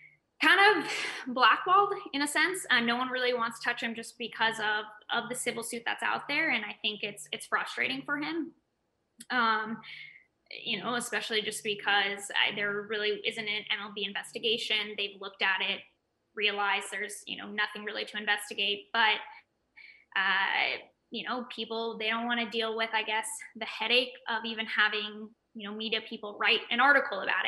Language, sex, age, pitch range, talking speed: English, female, 10-29, 210-245 Hz, 175 wpm